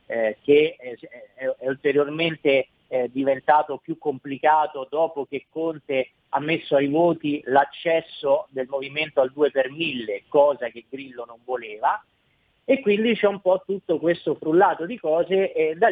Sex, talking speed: male, 130 wpm